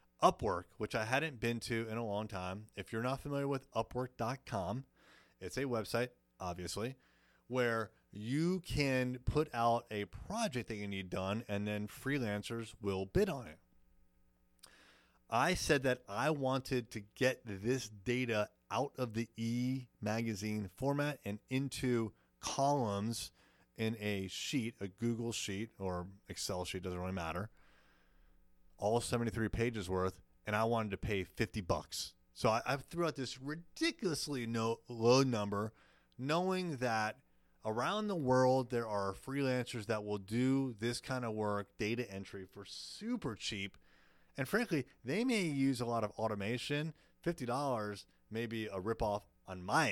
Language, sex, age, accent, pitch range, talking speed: English, male, 30-49, American, 100-130 Hz, 145 wpm